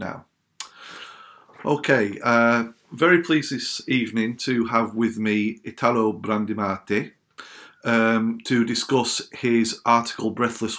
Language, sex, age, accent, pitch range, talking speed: English, male, 40-59, British, 110-125 Hz, 100 wpm